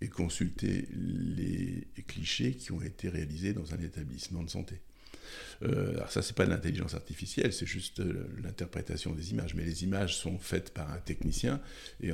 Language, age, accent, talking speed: French, 60-79, French, 180 wpm